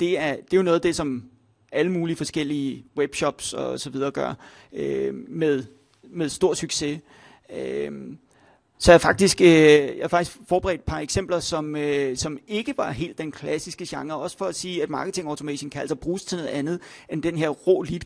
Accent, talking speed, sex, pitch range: native, 195 wpm, male, 145-175 Hz